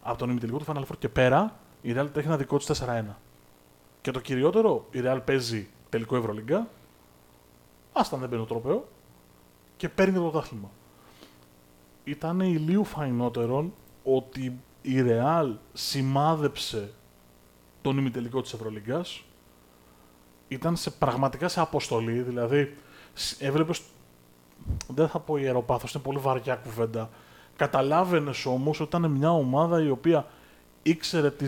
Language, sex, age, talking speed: Greek, male, 30-49, 130 wpm